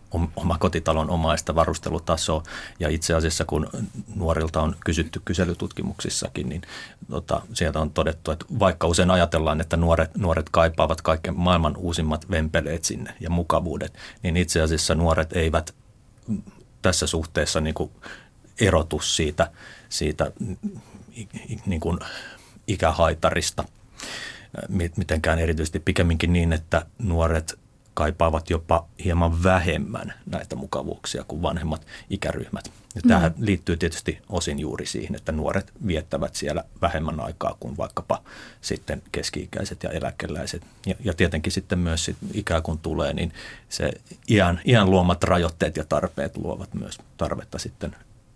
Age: 30-49